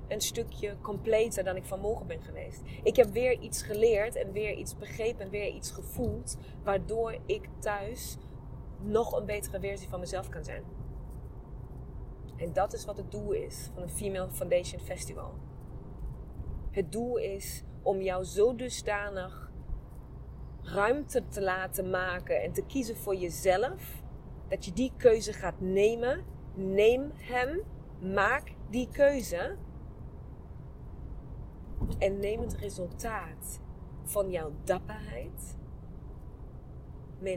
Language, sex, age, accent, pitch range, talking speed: Dutch, female, 20-39, Dutch, 185-245 Hz, 130 wpm